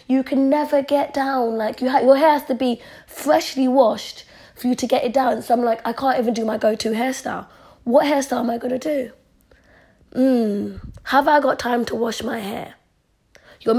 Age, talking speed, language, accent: 20-39, 200 wpm, English, British